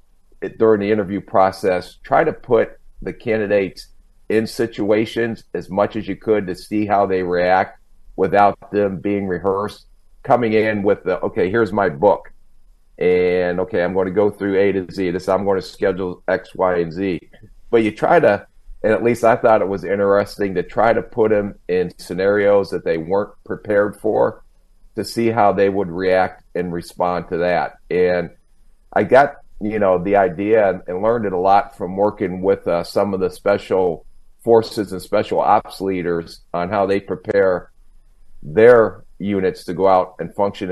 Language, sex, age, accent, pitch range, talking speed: English, male, 40-59, American, 90-105 Hz, 180 wpm